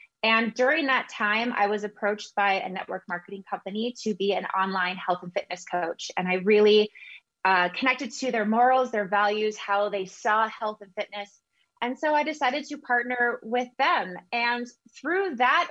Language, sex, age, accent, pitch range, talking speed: English, female, 20-39, American, 200-250 Hz, 180 wpm